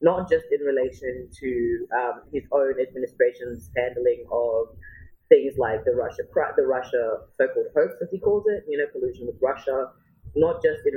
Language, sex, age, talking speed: English, female, 20-39, 170 wpm